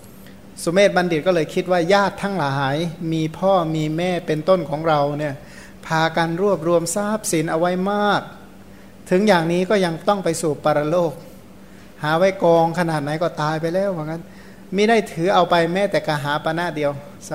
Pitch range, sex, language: 150-180 Hz, male, Thai